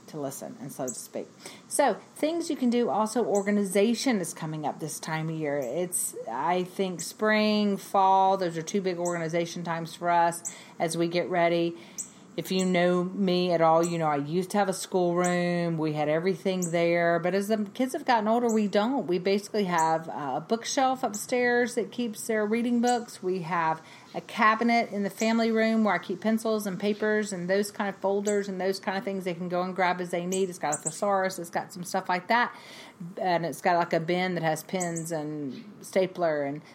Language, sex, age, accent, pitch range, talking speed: English, female, 40-59, American, 170-210 Hz, 210 wpm